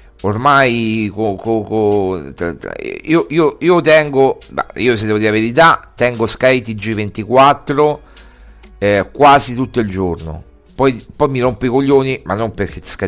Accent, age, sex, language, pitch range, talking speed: native, 50-69, male, Italian, 100-135 Hz, 145 wpm